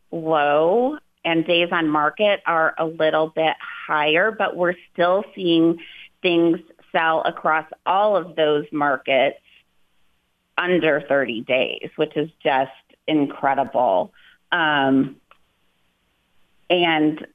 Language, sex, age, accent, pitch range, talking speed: English, female, 30-49, American, 145-170 Hz, 105 wpm